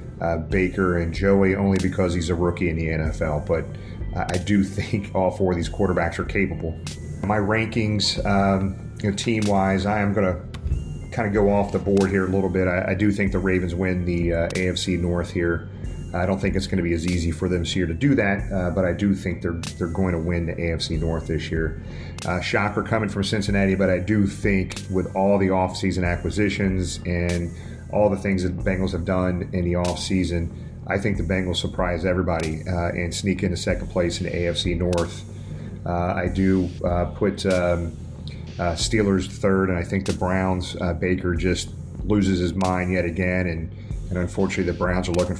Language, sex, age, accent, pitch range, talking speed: English, male, 30-49, American, 85-100 Hz, 210 wpm